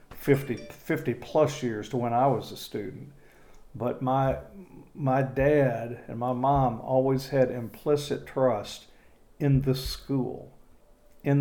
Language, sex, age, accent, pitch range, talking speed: English, male, 50-69, American, 120-135 Hz, 130 wpm